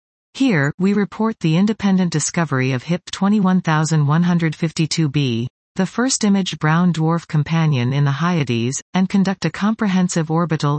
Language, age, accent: English, 40-59, American